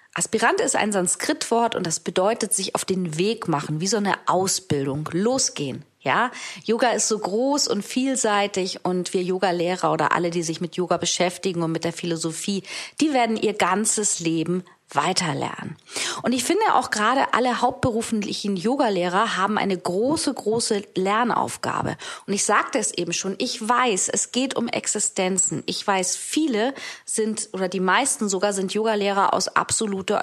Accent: German